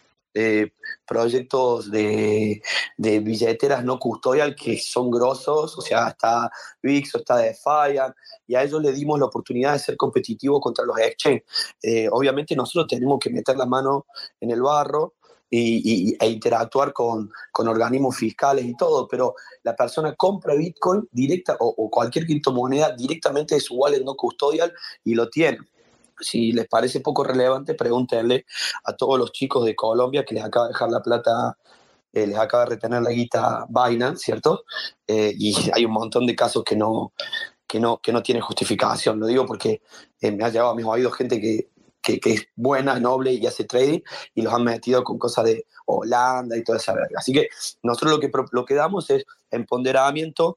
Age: 30-49